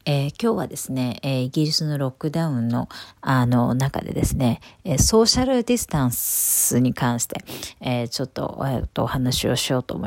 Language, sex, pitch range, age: Japanese, female, 125-155 Hz, 50-69